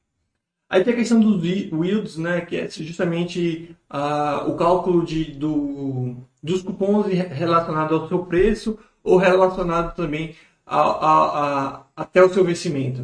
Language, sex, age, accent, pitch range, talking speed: Portuguese, male, 20-39, Brazilian, 150-185 Hz, 145 wpm